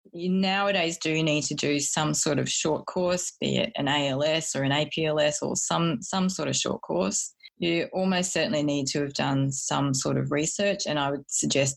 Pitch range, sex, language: 140-165 Hz, female, English